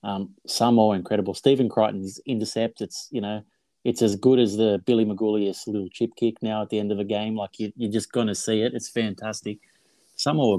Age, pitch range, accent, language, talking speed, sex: 30-49, 95-110 Hz, Australian, English, 205 wpm, male